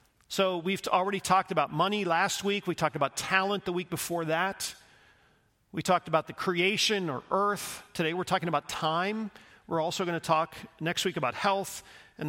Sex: male